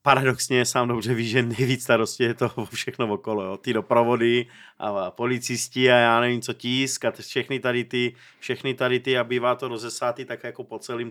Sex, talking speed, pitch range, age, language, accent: male, 185 wpm, 115-135 Hz, 30-49, Czech, native